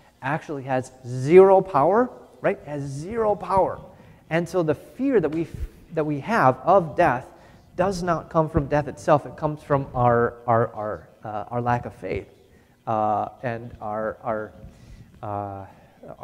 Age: 30-49